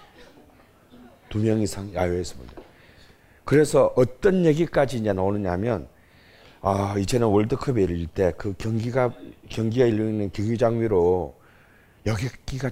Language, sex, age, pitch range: Korean, male, 40-59, 100-140 Hz